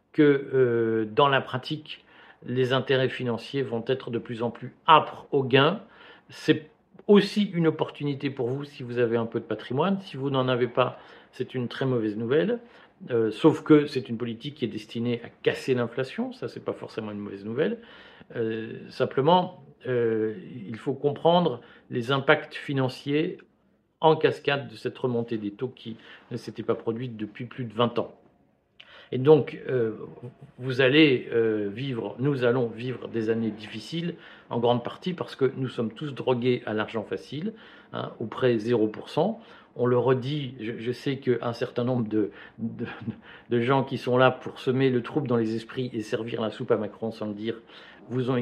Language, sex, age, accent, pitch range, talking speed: French, male, 50-69, French, 115-140 Hz, 180 wpm